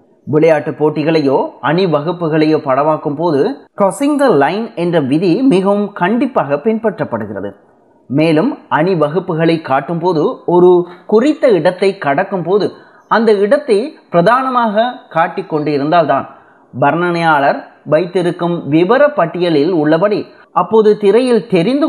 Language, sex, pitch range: Tamil, male, 150-210 Hz